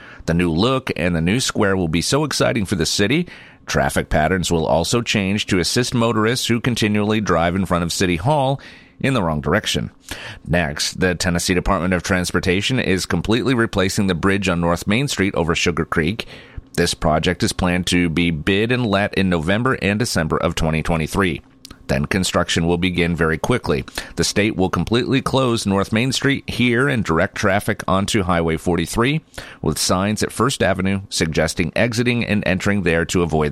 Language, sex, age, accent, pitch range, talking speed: English, male, 40-59, American, 85-115 Hz, 180 wpm